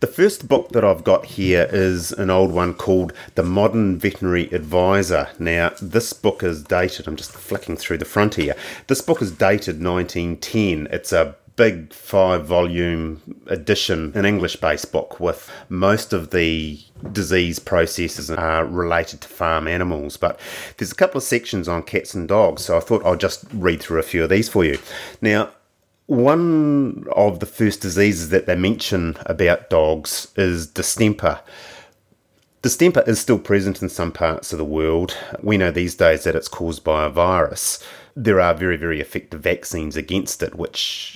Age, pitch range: 30-49, 80-100 Hz